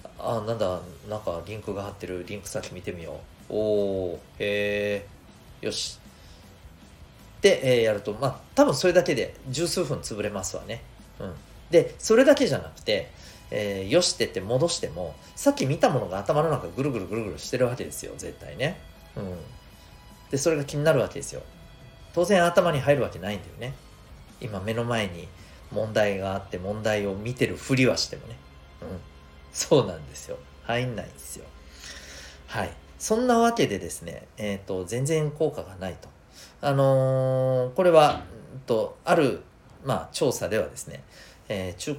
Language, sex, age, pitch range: Japanese, male, 40-59, 90-145 Hz